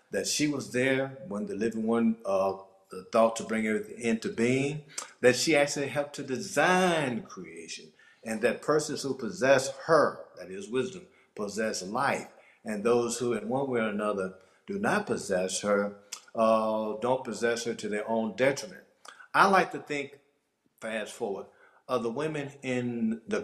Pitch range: 110-140 Hz